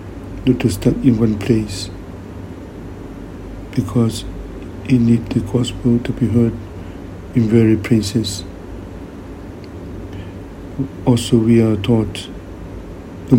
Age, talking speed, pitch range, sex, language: 60-79, 100 wpm, 90-120 Hz, male, English